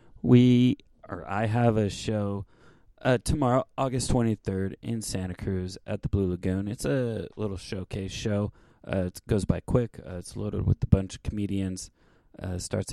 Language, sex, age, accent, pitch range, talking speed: English, male, 20-39, American, 95-115 Hz, 175 wpm